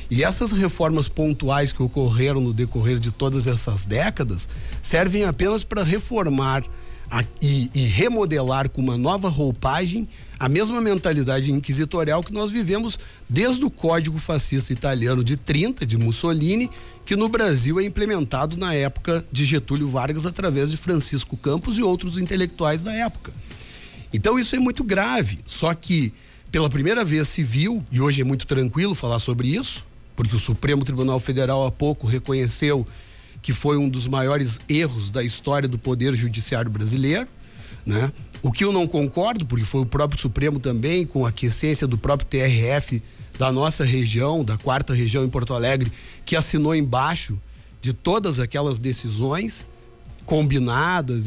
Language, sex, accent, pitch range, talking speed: Portuguese, male, Brazilian, 125-160 Hz, 155 wpm